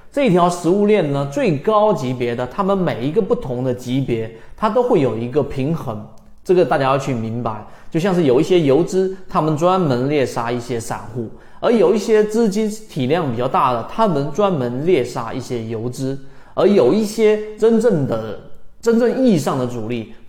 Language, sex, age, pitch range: Chinese, male, 30-49, 125-175 Hz